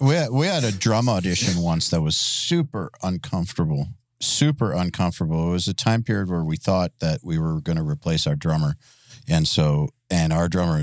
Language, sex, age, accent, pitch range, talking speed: English, male, 40-59, American, 90-120 Hz, 190 wpm